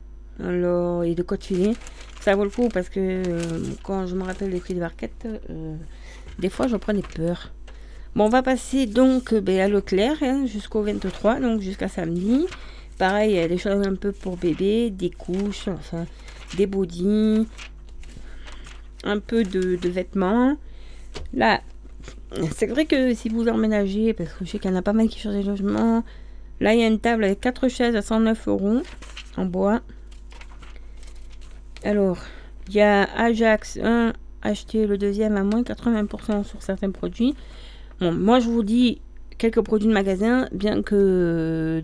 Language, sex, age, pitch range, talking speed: French, female, 40-59, 170-220 Hz, 175 wpm